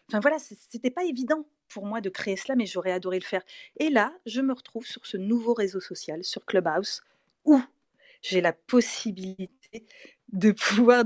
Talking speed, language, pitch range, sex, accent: 185 wpm, French, 185-245 Hz, female, French